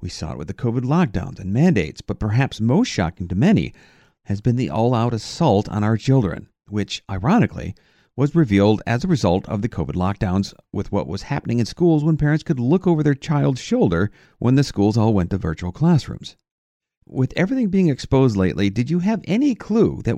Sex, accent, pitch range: male, American, 100-165 Hz